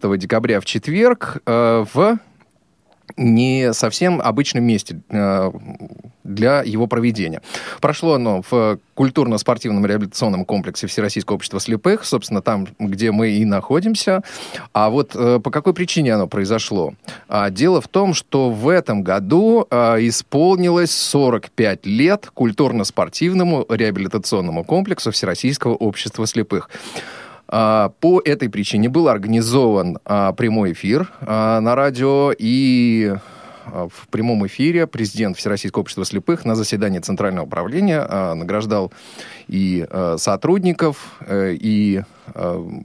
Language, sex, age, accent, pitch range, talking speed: Russian, male, 30-49, native, 100-140 Hz, 110 wpm